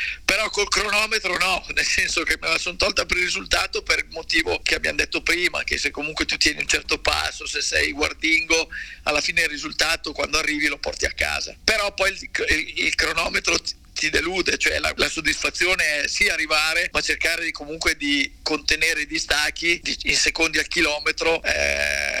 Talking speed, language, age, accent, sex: 185 wpm, Italian, 50-69, native, male